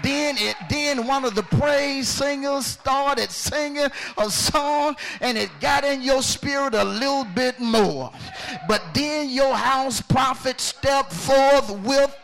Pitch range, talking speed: 230-285 Hz, 145 wpm